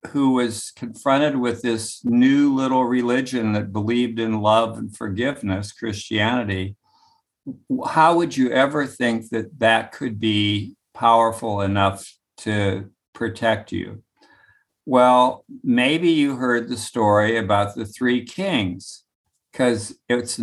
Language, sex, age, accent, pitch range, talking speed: English, male, 60-79, American, 105-125 Hz, 120 wpm